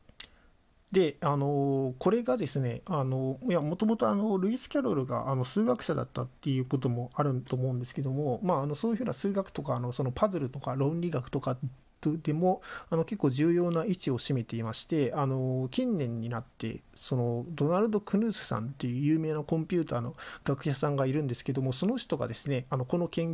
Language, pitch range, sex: Japanese, 130-180 Hz, male